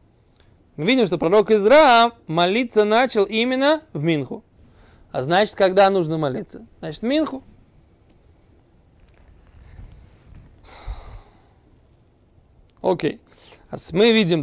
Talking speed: 85 wpm